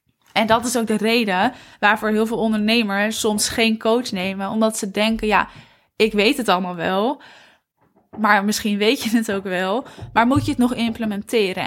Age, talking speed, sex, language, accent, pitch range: 10-29, 185 wpm, female, Dutch, Dutch, 200-230 Hz